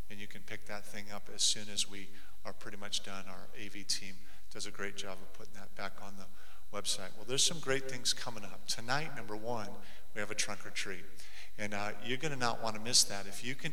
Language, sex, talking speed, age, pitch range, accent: English, male, 255 wpm, 50-69, 110-125 Hz, American